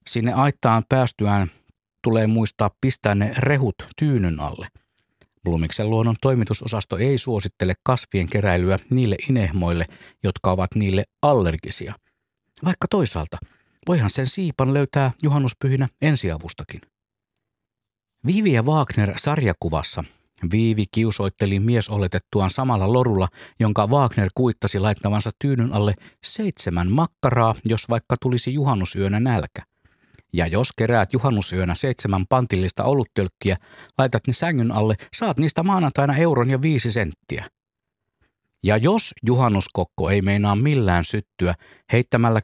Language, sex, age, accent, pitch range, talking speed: Finnish, male, 50-69, native, 95-130 Hz, 110 wpm